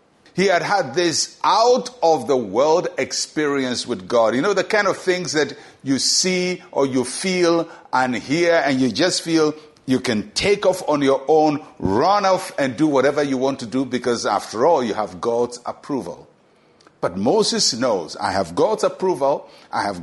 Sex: male